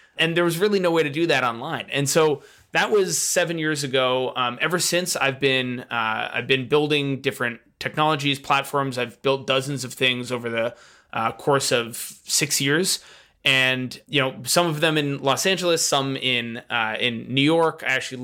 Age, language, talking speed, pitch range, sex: 20-39, English, 190 wpm, 125-150 Hz, male